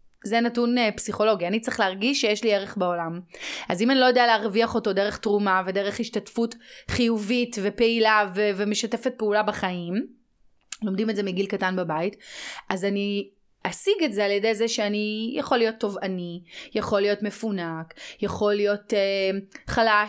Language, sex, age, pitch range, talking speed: Hebrew, female, 30-49, 195-235 Hz, 155 wpm